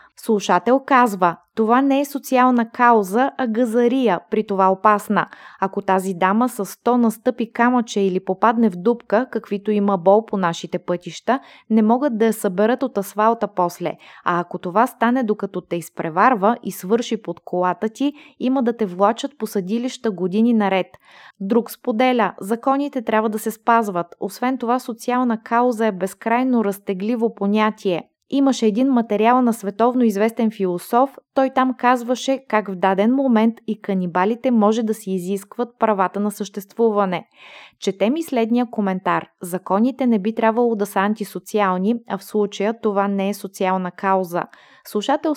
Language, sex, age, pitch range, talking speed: Bulgarian, female, 20-39, 195-240 Hz, 155 wpm